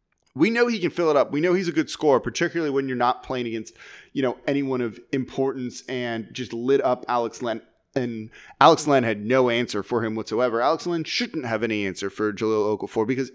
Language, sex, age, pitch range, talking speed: English, male, 30-49, 120-160 Hz, 220 wpm